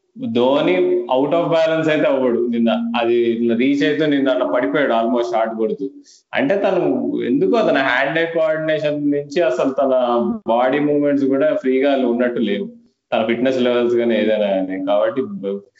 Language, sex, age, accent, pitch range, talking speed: Telugu, male, 20-39, native, 115-140 Hz, 145 wpm